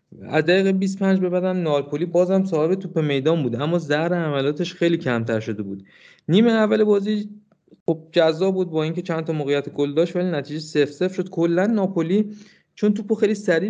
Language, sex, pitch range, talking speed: Persian, male, 135-180 Hz, 180 wpm